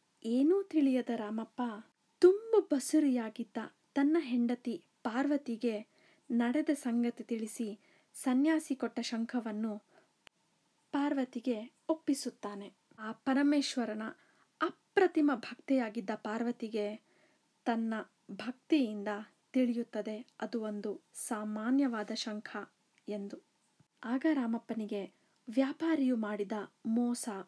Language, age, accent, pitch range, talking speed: Kannada, 30-49, native, 220-290 Hz, 75 wpm